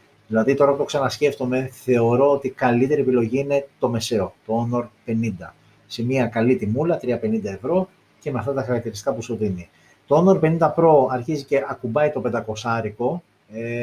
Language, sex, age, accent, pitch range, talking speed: Greek, male, 30-49, native, 110-145 Hz, 175 wpm